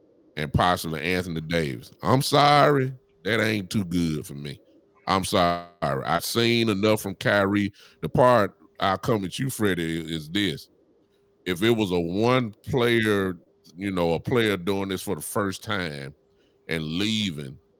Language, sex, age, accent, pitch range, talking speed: English, male, 30-49, American, 85-115 Hz, 155 wpm